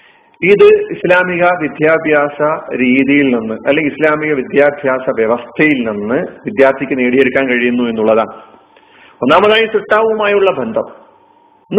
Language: Malayalam